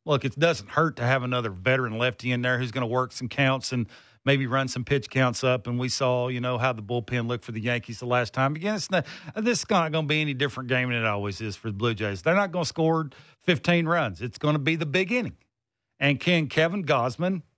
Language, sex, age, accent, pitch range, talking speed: English, male, 50-69, American, 125-180 Hz, 260 wpm